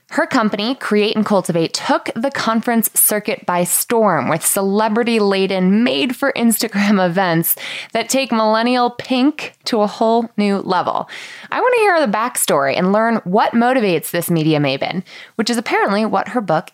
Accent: American